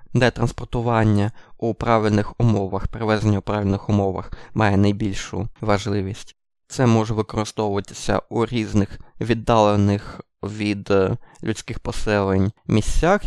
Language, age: Ukrainian, 20-39